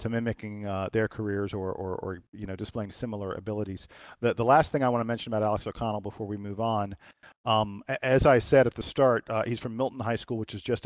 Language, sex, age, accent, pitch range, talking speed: English, male, 40-59, American, 100-120 Hz, 245 wpm